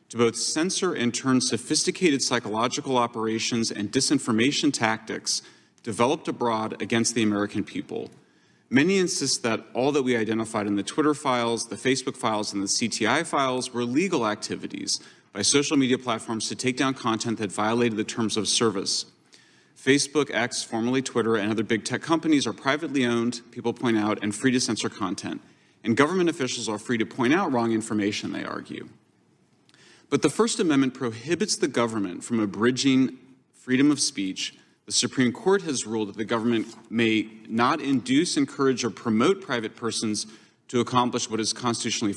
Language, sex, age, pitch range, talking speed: English, male, 30-49, 110-130 Hz, 165 wpm